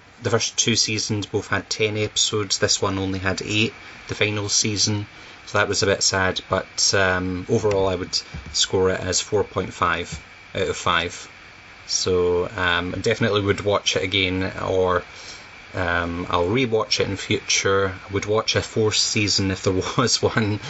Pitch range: 90-105 Hz